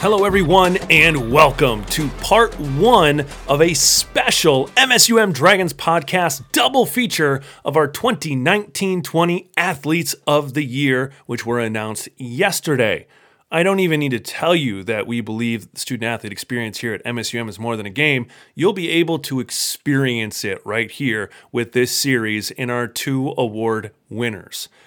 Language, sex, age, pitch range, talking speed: English, male, 30-49, 120-165 Hz, 150 wpm